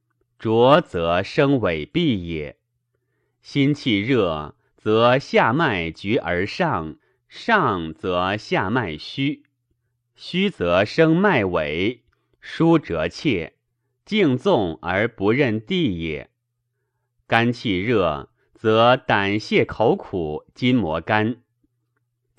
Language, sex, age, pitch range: Chinese, male, 30-49, 95-140 Hz